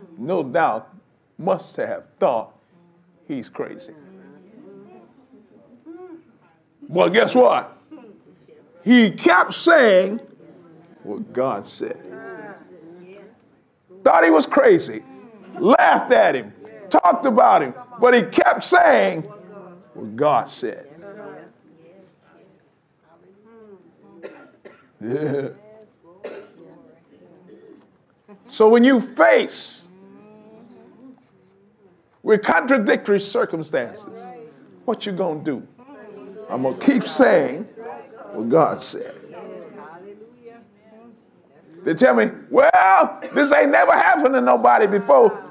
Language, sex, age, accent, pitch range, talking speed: English, male, 50-69, American, 195-275 Hz, 85 wpm